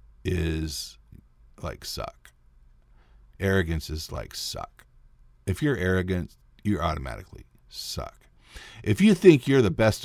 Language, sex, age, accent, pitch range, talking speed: English, male, 50-69, American, 65-105 Hz, 115 wpm